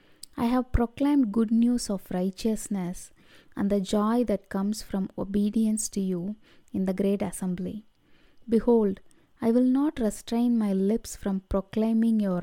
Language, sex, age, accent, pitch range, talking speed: English, female, 20-39, Indian, 190-230 Hz, 145 wpm